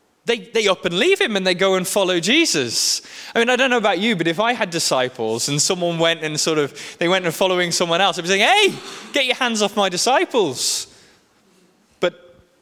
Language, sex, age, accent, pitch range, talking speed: English, male, 20-39, British, 155-235 Hz, 225 wpm